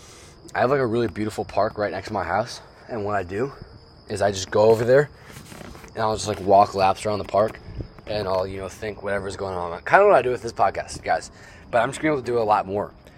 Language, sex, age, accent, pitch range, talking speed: English, male, 20-39, American, 85-110 Hz, 275 wpm